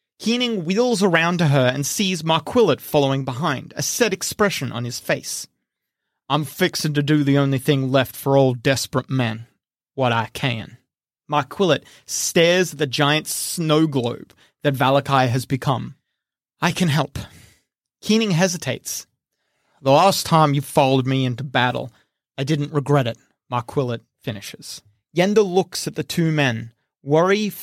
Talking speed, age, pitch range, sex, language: 150 wpm, 30-49, 130-160 Hz, male, English